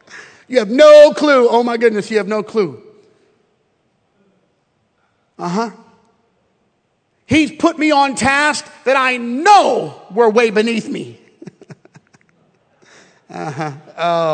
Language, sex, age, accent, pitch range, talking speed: English, male, 40-59, American, 170-245 Hz, 110 wpm